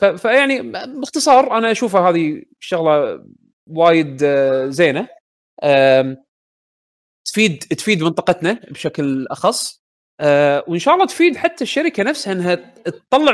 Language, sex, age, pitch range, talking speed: Arabic, male, 30-49, 140-195 Hz, 115 wpm